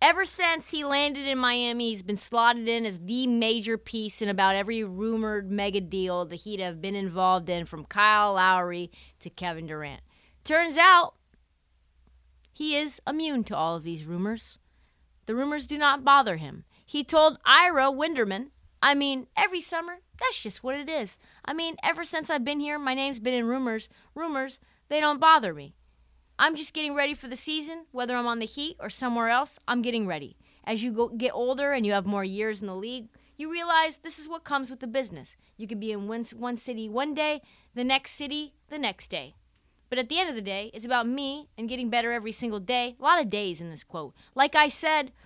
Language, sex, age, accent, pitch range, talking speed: English, female, 30-49, American, 200-290 Hz, 210 wpm